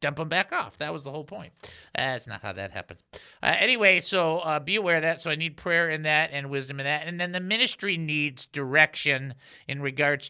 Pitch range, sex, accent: 145-195 Hz, male, American